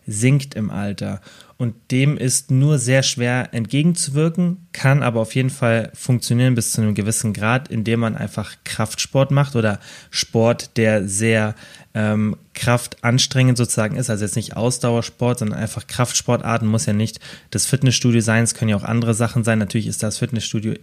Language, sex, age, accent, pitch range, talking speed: German, male, 20-39, German, 110-130 Hz, 165 wpm